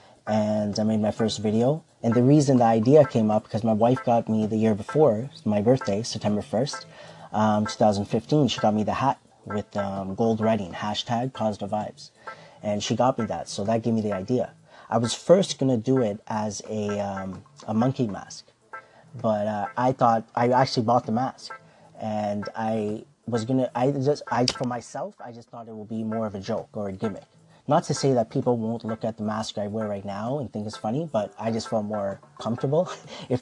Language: English